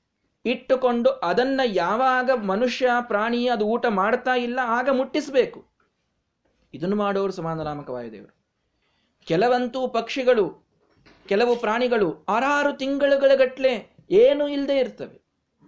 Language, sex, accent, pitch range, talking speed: Kannada, male, native, 180-245 Hz, 95 wpm